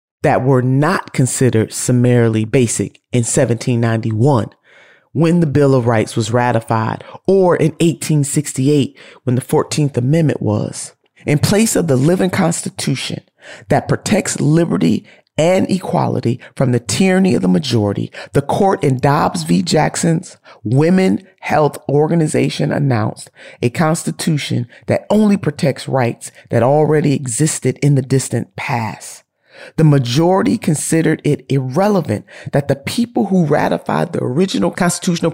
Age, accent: 40-59, American